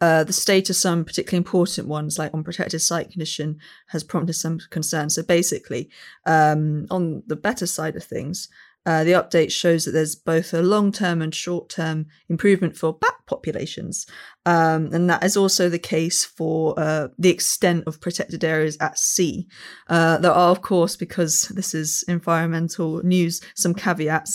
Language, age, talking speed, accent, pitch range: English, 20-39, 170 wpm, British, 155-180 Hz